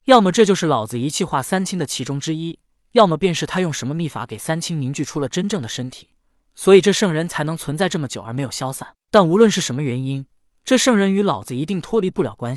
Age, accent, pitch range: 20-39, native, 130-185 Hz